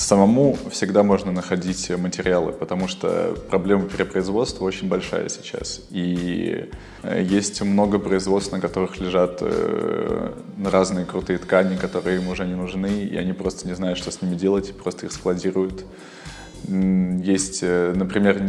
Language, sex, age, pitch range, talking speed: Russian, male, 20-39, 90-100 Hz, 135 wpm